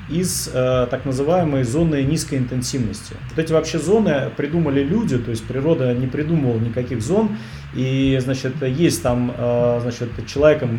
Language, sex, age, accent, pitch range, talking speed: Russian, male, 30-49, native, 125-155 Hz, 145 wpm